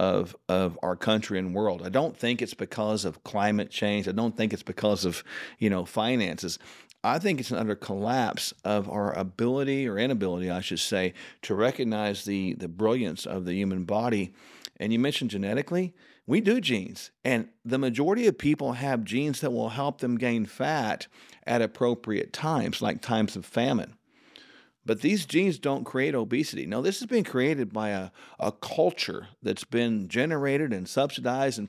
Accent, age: American, 50-69